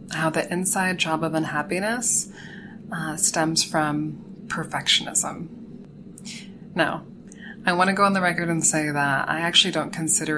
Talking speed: 145 wpm